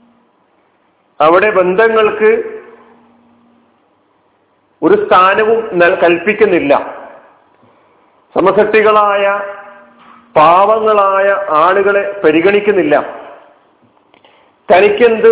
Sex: male